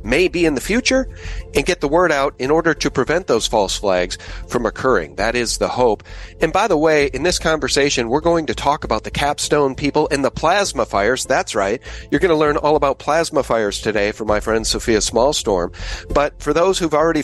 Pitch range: 125-155 Hz